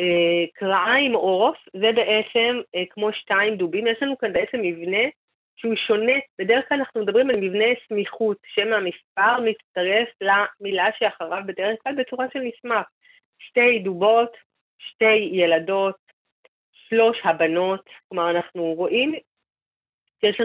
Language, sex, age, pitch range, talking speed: Hebrew, female, 30-49, 175-225 Hz, 125 wpm